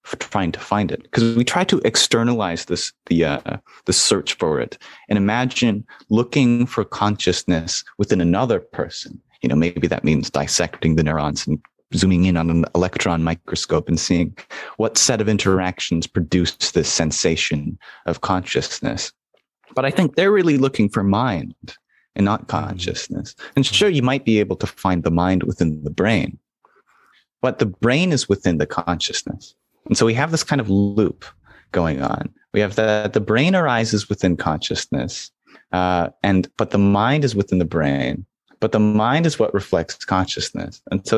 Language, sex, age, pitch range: English, male, 30-49, 85-120 Hz